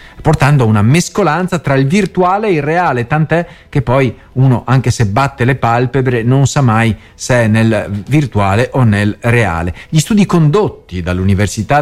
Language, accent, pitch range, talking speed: Italian, native, 110-170 Hz, 170 wpm